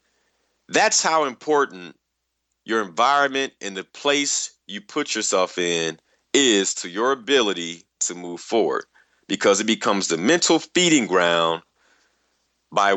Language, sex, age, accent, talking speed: English, male, 40-59, American, 125 wpm